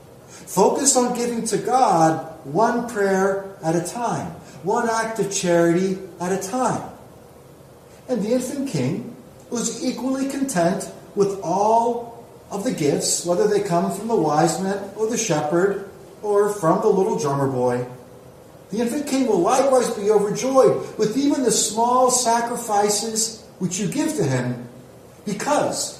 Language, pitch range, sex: English, 160-235 Hz, male